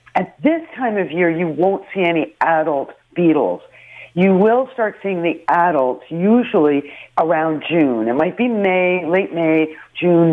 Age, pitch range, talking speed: 50-69, 155-195 Hz, 155 wpm